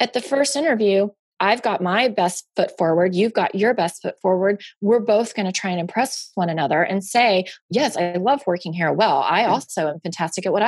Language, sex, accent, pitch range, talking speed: English, female, American, 185-240 Hz, 220 wpm